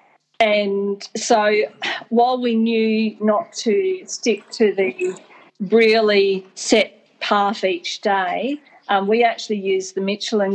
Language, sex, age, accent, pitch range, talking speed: English, female, 40-59, Australian, 180-220 Hz, 120 wpm